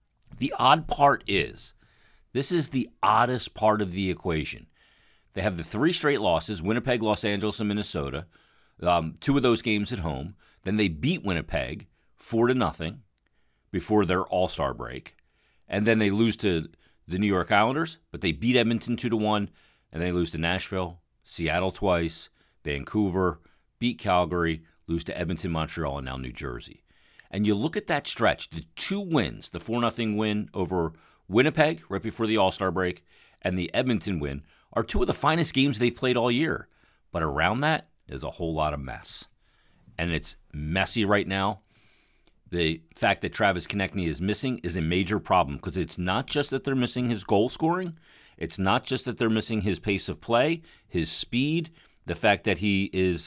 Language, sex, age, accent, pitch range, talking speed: English, male, 40-59, American, 85-115 Hz, 180 wpm